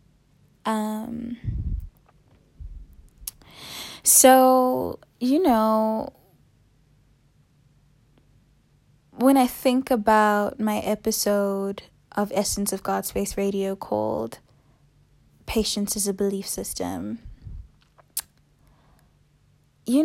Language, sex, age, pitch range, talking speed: English, female, 20-39, 190-230 Hz, 70 wpm